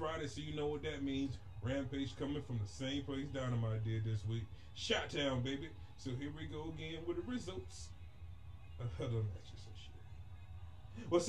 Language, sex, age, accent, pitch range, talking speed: English, male, 30-49, American, 100-135 Hz, 175 wpm